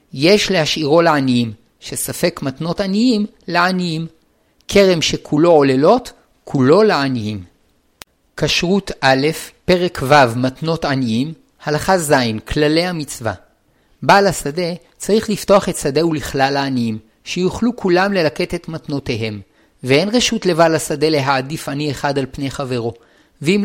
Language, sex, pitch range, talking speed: Hebrew, male, 140-180 Hz, 115 wpm